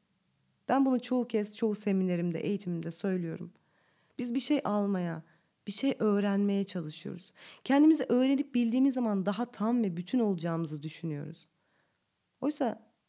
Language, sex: Turkish, female